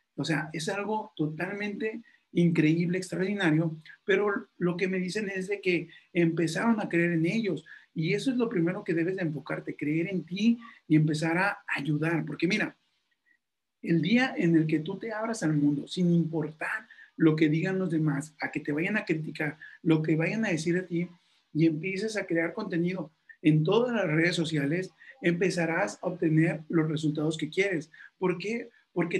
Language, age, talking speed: Spanish, 40-59, 180 wpm